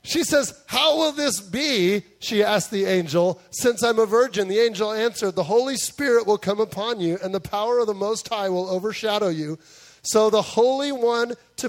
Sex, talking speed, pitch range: male, 200 wpm, 180-230 Hz